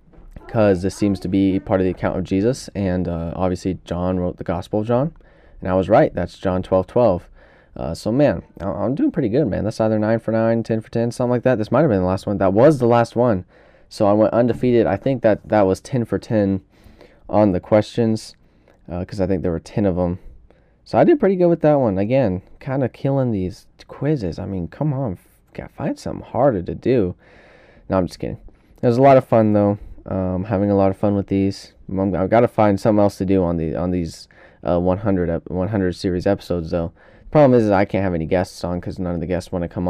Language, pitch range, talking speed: English, 90-115 Hz, 240 wpm